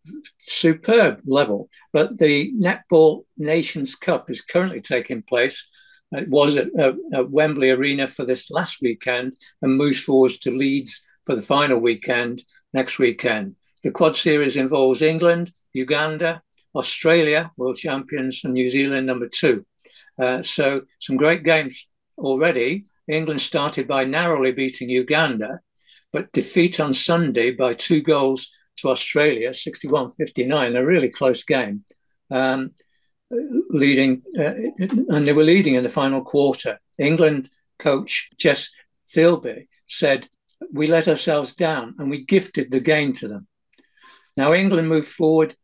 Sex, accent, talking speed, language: male, British, 135 wpm, English